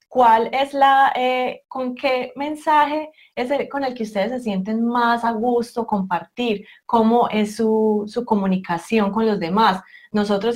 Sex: female